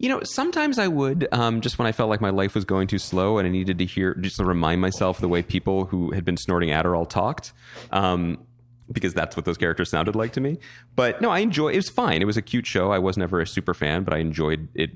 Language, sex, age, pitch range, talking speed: English, male, 30-49, 80-120 Hz, 270 wpm